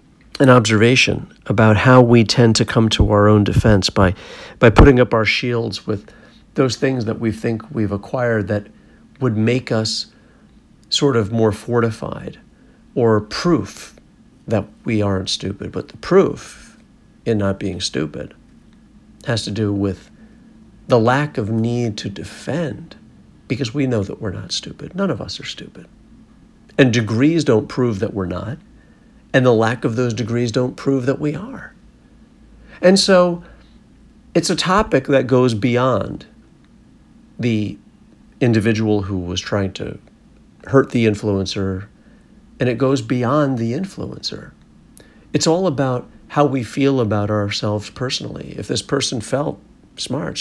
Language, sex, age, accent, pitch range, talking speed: English, male, 50-69, American, 105-135 Hz, 150 wpm